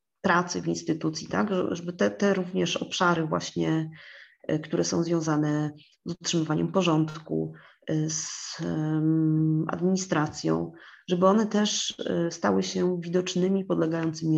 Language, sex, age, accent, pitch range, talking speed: Polish, female, 30-49, native, 155-185 Hz, 110 wpm